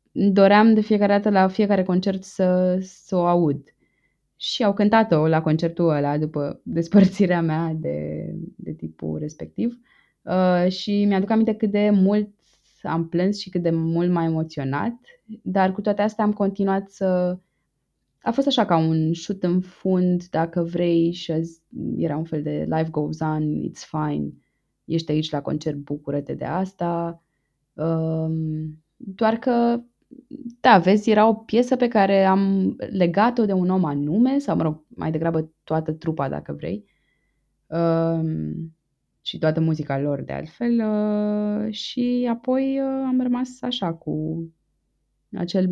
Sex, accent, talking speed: female, native, 145 wpm